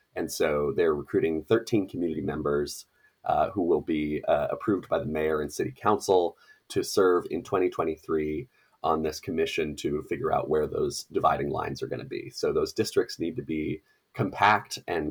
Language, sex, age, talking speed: English, male, 30-49, 180 wpm